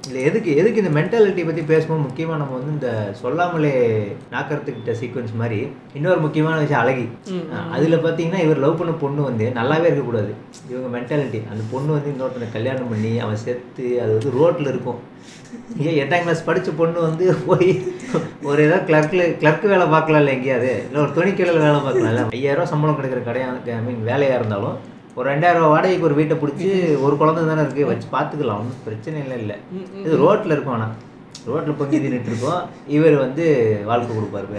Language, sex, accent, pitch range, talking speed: Tamil, male, native, 125-160 Hz, 170 wpm